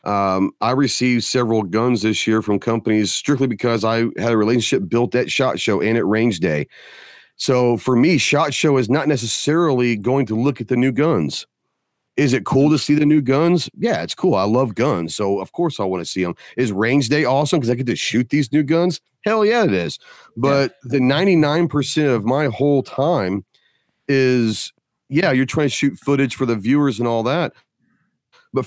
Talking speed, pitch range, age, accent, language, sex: 205 wpm, 115-140 Hz, 40-59, American, English, male